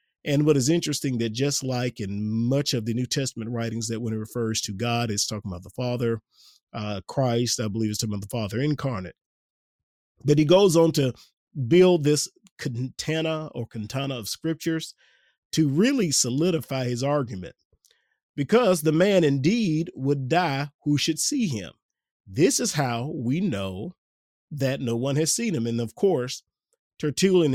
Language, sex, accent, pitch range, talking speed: English, male, American, 120-160 Hz, 170 wpm